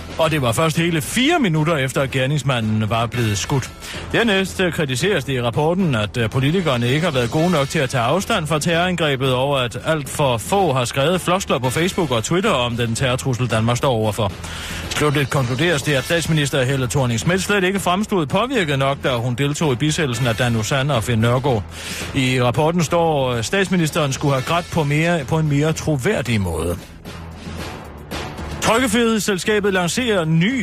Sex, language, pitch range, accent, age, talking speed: male, Danish, 120-170 Hz, native, 30-49, 175 wpm